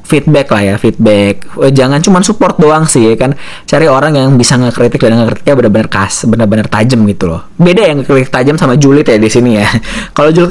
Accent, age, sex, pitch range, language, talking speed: native, 20-39, male, 95-120 Hz, Indonesian, 210 wpm